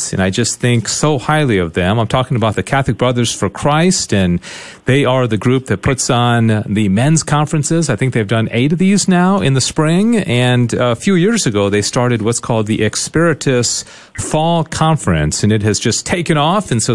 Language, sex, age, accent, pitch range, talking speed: English, male, 40-59, American, 115-155 Hz, 210 wpm